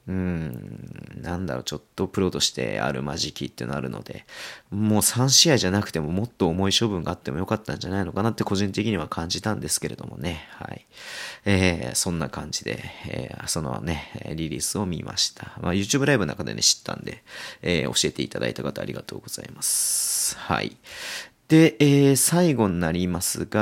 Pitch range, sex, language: 85-120 Hz, male, Japanese